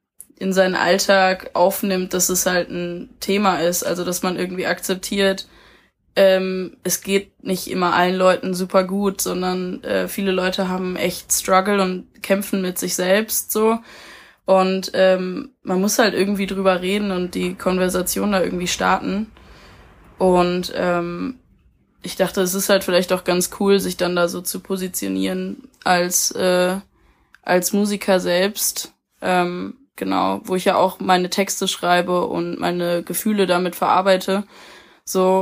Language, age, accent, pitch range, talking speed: German, 20-39, German, 180-195 Hz, 150 wpm